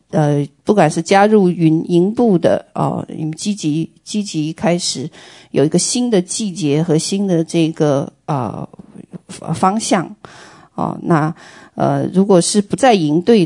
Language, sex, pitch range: Chinese, female, 160-195 Hz